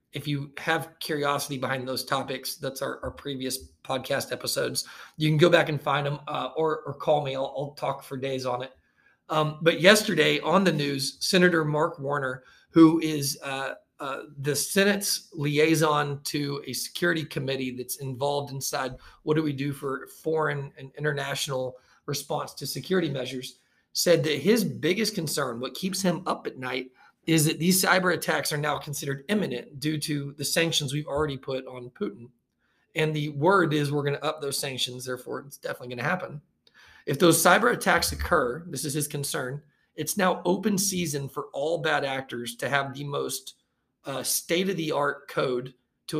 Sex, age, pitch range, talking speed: male, 40-59, 135-160 Hz, 180 wpm